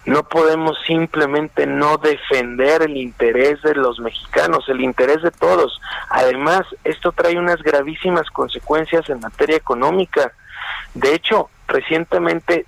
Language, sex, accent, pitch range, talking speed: Spanish, male, Mexican, 160-210 Hz, 125 wpm